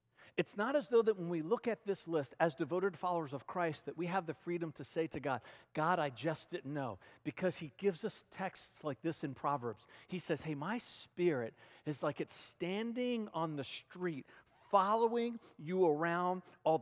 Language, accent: English, American